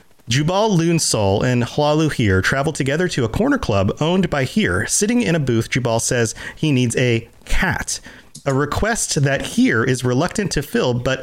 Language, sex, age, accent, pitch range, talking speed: English, male, 40-59, American, 115-170 Hz, 175 wpm